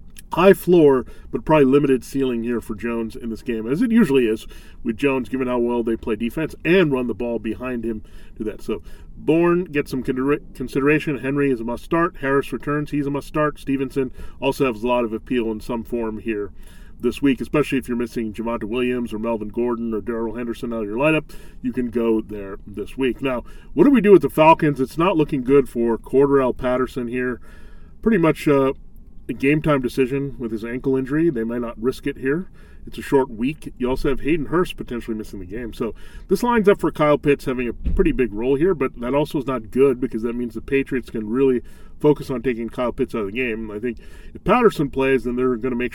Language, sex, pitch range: English, male, 115-145 Hz